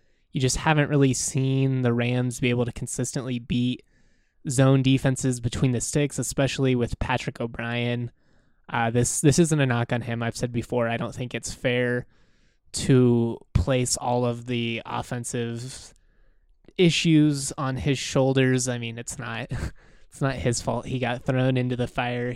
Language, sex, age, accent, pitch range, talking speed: English, male, 20-39, American, 120-135 Hz, 165 wpm